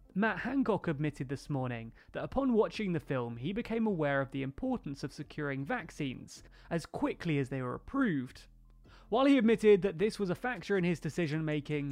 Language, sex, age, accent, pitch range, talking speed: English, male, 20-39, British, 140-210 Hz, 180 wpm